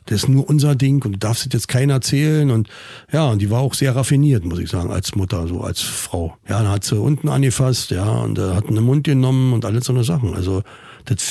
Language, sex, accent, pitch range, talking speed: German, male, German, 105-130 Hz, 255 wpm